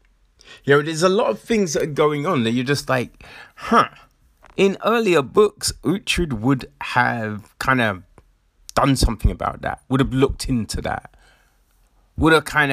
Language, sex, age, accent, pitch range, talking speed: English, male, 30-49, British, 110-145 Hz, 170 wpm